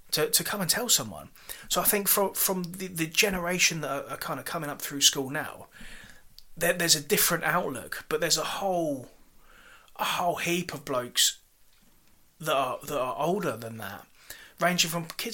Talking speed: 185 wpm